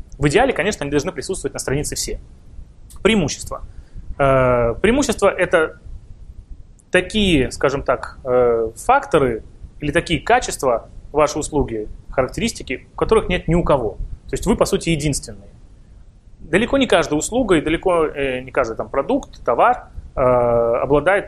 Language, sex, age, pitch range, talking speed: Russian, male, 20-39, 115-170 Hz, 150 wpm